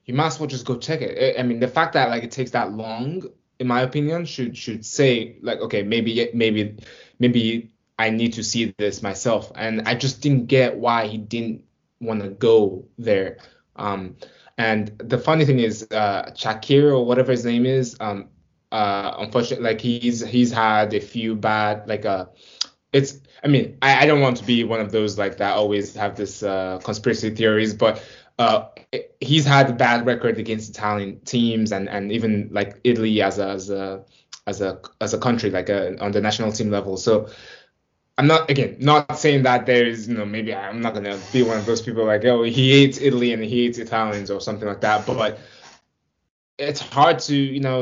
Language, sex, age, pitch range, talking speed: English, male, 20-39, 105-130 Hz, 205 wpm